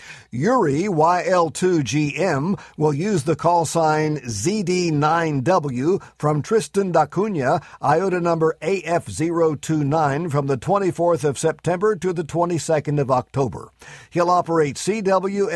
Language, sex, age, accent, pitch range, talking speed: English, male, 50-69, American, 140-180 Hz, 110 wpm